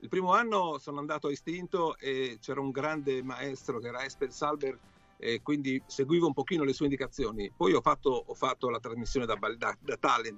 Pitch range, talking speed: 135-170 Hz, 210 wpm